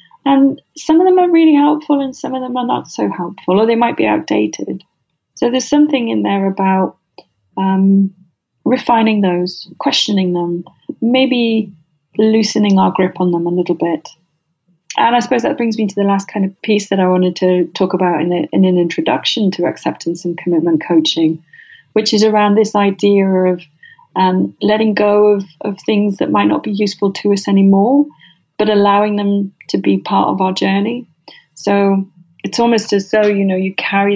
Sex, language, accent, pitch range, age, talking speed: female, English, British, 175-220 Hz, 30-49, 185 wpm